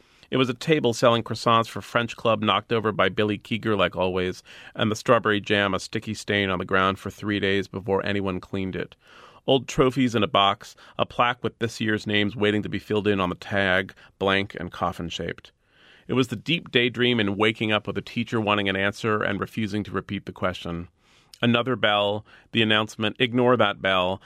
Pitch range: 100-115 Hz